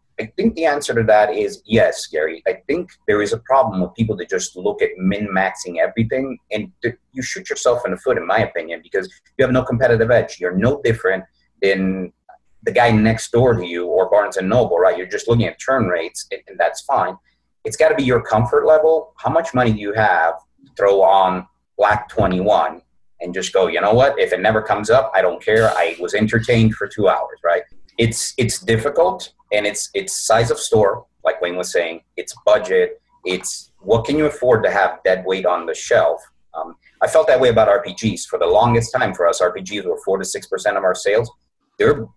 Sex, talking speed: male, 215 wpm